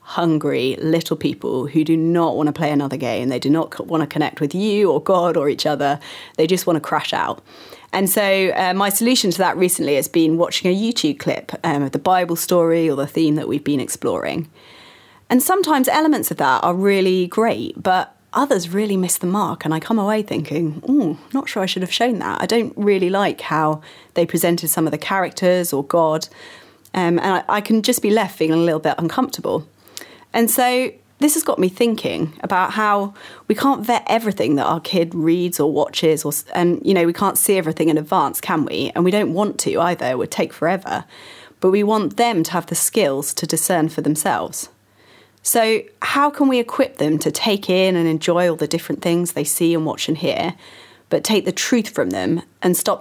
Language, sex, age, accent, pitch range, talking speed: English, female, 30-49, British, 160-210 Hz, 215 wpm